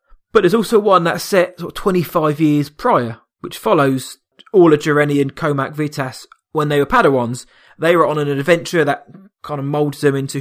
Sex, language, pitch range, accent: male, English, 135-160 Hz, British